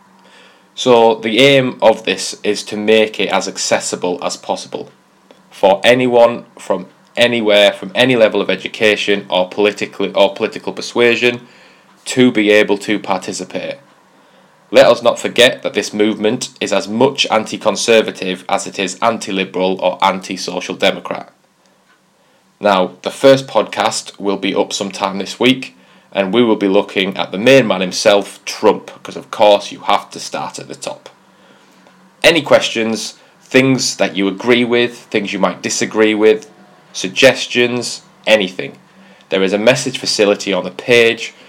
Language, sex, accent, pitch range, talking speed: English, male, British, 100-120 Hz, 150 wpm